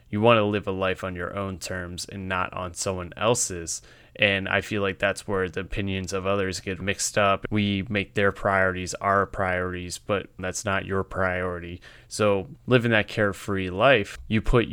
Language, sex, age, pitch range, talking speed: English, male, 20-39, 95-110 Hz, 185 wpm